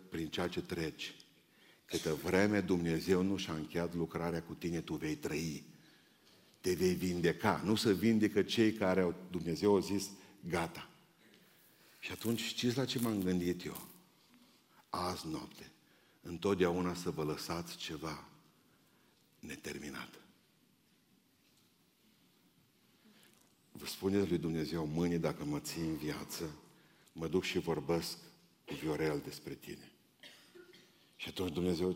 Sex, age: male, 50-69